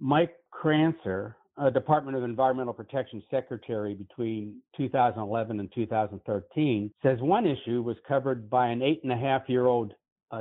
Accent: American